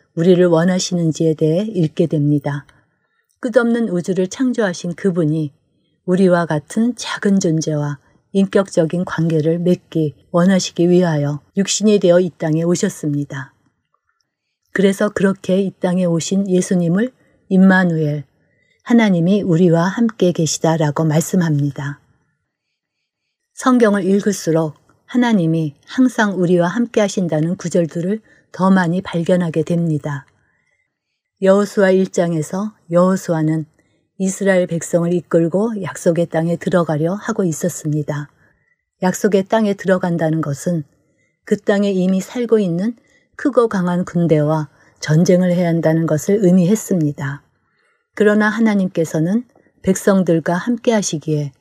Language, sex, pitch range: Korean, female, 160-195 Hz